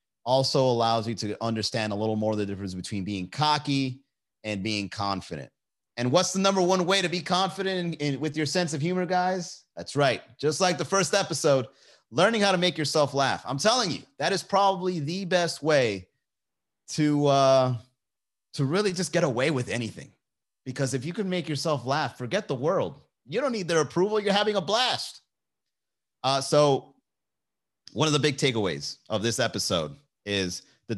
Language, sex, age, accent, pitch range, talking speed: English, male, 30-49, American, 110-155 Hz, 185 wpm